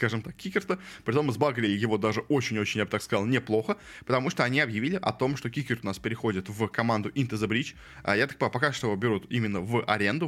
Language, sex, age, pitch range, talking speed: Russian, male, 20-39, 105-130 Hz, 235 wpm